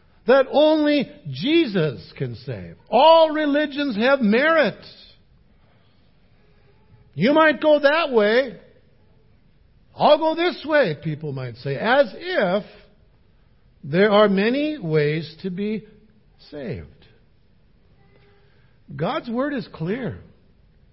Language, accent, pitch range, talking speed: English, American, 145-235 Hz, 95 wpm